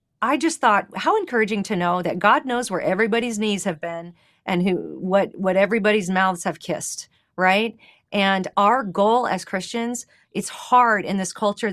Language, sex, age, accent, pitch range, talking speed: English, female, 40-59, American, 180-220 Hz, 175 wpm